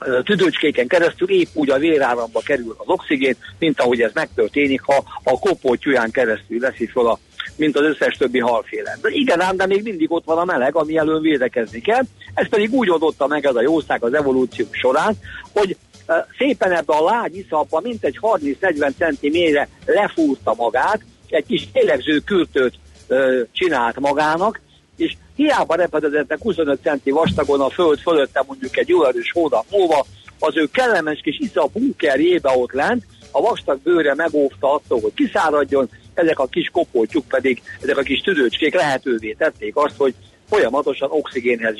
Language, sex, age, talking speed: Hungarian, male, 50-69, 155 wpm